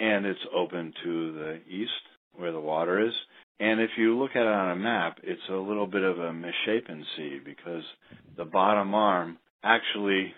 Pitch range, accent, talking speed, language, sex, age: 85-110 Hz, American, 185 wpm, English, male, 50-69